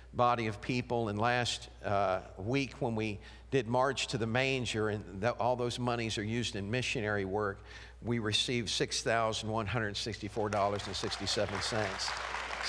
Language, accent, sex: English, American, male